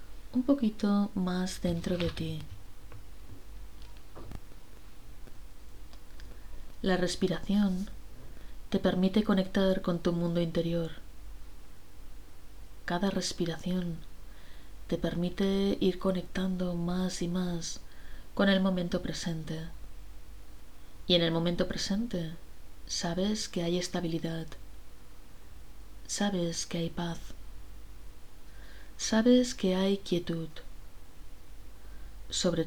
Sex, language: female, Spanish